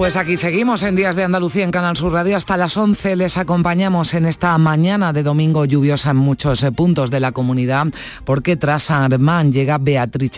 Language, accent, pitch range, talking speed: Spanish, Spanish, 120-165 Hz, 190 wpm